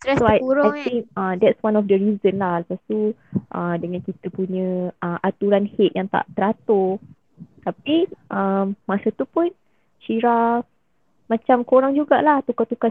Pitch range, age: 185-225 Hz, 20-39